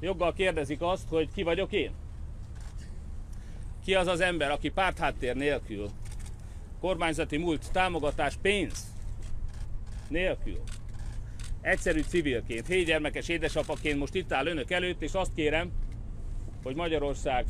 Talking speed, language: 115 wpm, Hungarian